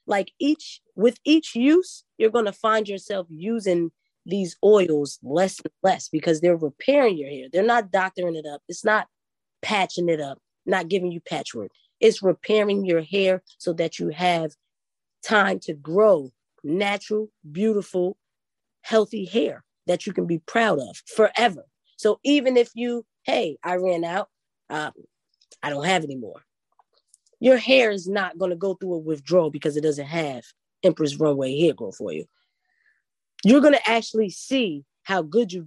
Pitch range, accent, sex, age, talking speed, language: 165-220 Hz, American, female, 20-39, 165 wpm, English